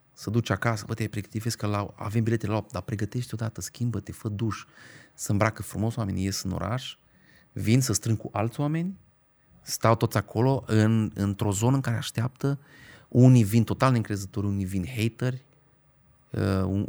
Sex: male